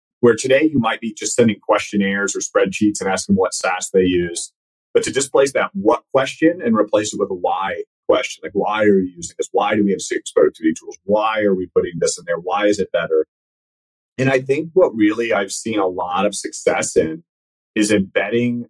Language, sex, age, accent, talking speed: English, male, 30-49, American, 215 wpm